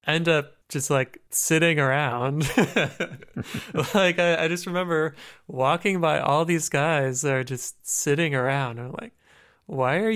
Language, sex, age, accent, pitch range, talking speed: English, male, 20-39, American, 125-160 Hz, 150 wpm